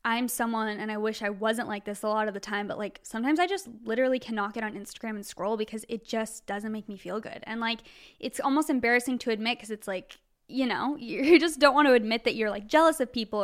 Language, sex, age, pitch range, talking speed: English, female, 10-29, 220-255 Hz, 260 wpm